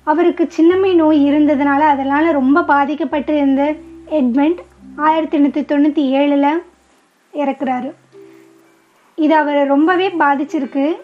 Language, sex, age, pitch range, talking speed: Tamil, female, 20-39, 280-335 Hz, 90 wpm